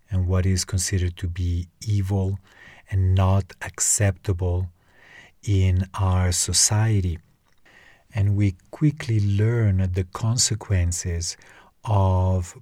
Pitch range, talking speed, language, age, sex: 90-100 Hz, 95 wpm, English, 40-59, male